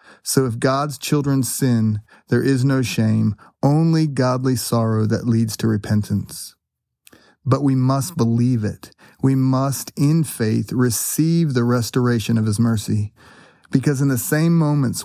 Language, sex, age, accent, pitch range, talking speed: English, male, 30-49, American, 115-140 Hz, 145 wpm